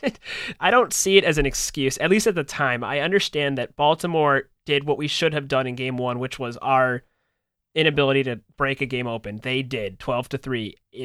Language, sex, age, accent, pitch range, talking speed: English, male, 30-49, American, 135-160 Hz, 205 wpm